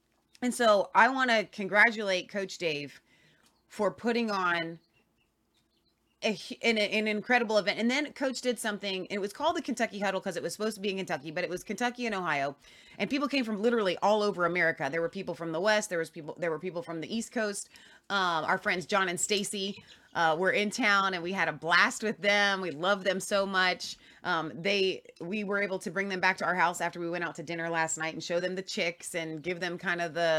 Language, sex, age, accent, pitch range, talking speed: English, female, 30-49, American, 170-225 Hz, 230 wpm